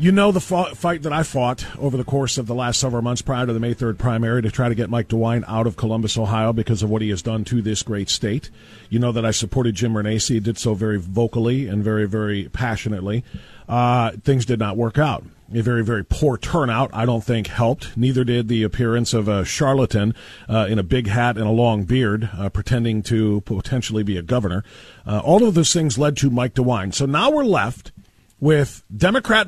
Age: 40-59